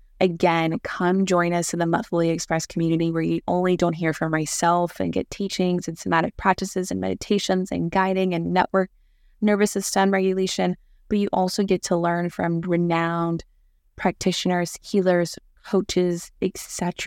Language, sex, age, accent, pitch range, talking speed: English, female, 20-39, American, 165-180 Hz, 150 wpm